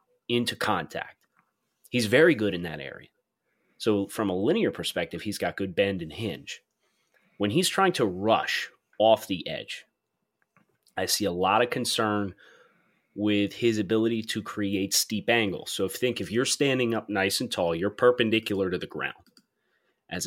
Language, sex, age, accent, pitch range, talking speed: English, male, 30-49, American, 100-135 Hz, 165 wpm